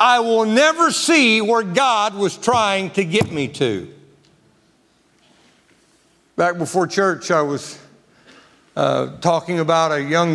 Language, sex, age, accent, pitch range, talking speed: English, male, 50-69, American, 160-220 Hz, 130 wpm